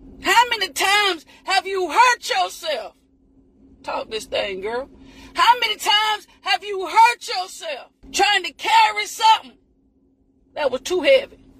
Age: 40-59